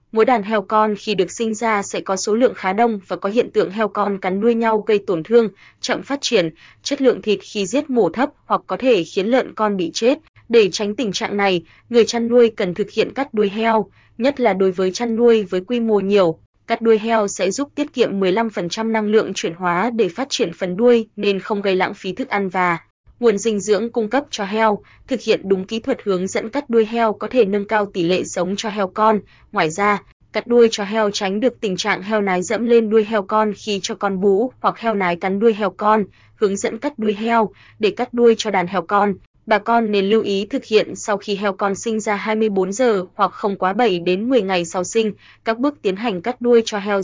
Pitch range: 195-230 Hz